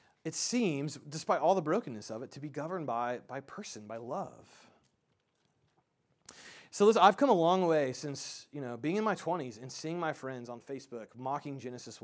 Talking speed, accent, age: 190 wpm, American, 30-49